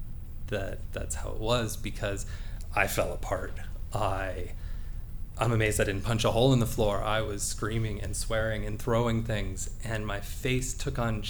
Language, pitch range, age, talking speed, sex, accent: English, 90-120 Hz, 20-39, 175 wpm, male, American